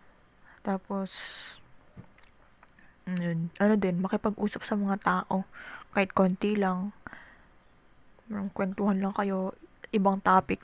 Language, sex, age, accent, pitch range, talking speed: Filipino, female, 20-39, native, 180-200 Hz, 90 wpm